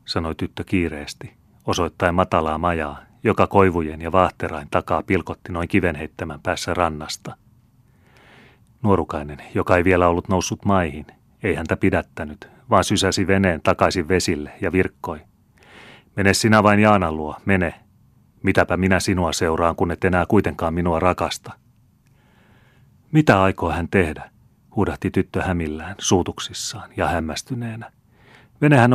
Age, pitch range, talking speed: 30-49, 85-110 Hz, 125 wpm